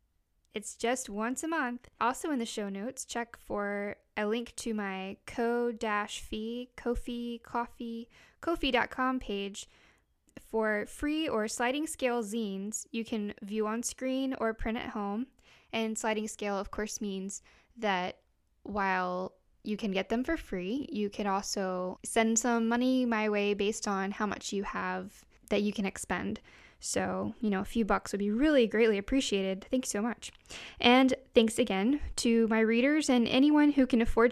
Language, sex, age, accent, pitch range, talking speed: English, female, 10-29, American, 205-245 Hz, 165 wpm